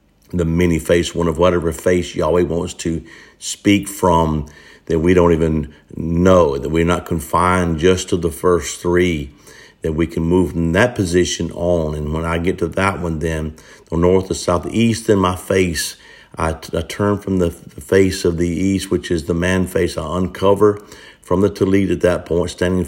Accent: American